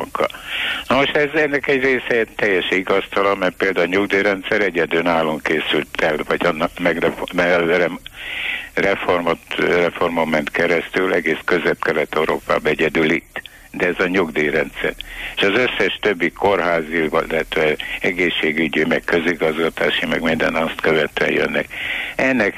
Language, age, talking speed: Hungarian, 60-79, 120 wpm